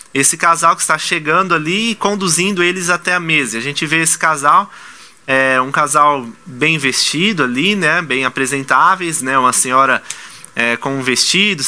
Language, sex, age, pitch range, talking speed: Portuguese, male, 20-39, 140-170 Hz, 160 wpm